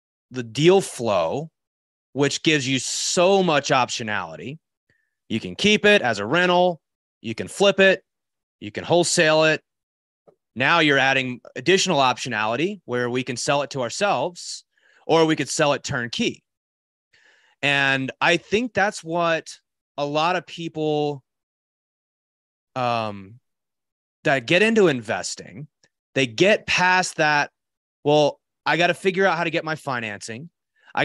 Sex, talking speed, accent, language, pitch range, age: male, 140 wpm, American, English, 120-170 Hz, 30-49